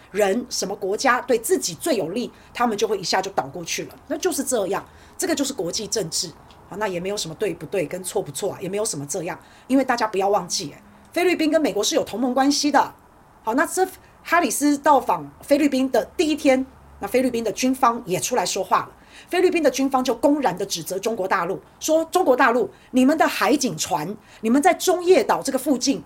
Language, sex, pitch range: Chinese, female, 200-285 Hz